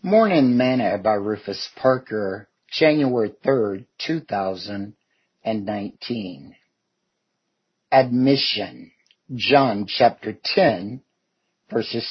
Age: 50-69